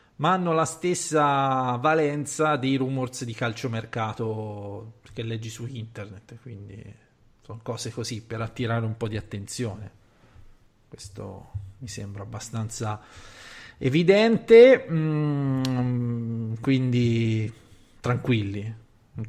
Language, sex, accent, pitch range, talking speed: Italian, male, native, 115-135 Hz, 100 wpm